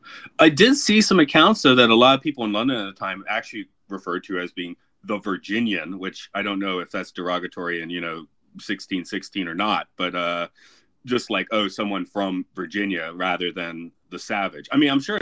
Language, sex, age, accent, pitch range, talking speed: English, male, 30-49, American, 90-120 Hz, 205 wpm